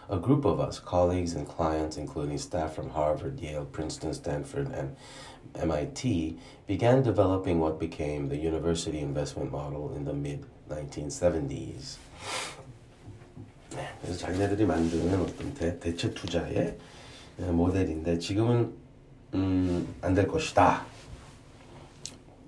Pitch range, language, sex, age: 85-130 Hz, Korean, male, 40-59